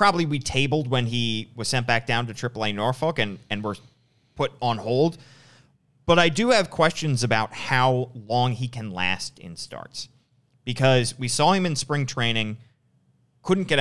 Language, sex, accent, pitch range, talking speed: English, male, American, 105-135 Hz, 175 wpm